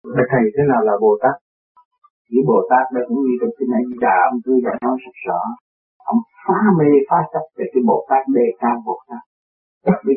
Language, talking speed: Vietnamese, 210 wpm